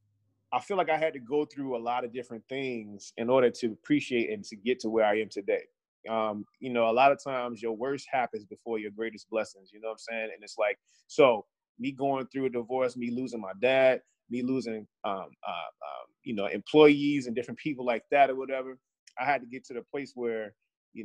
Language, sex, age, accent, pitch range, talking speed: English, male, 20-39, American, 115-145 Hz, 230 wpm